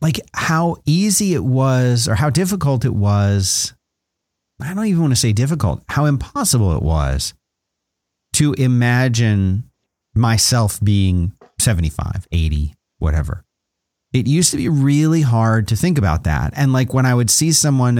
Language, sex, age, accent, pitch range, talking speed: English, male, 30-49, American, 100-140 Hz, 150 wpm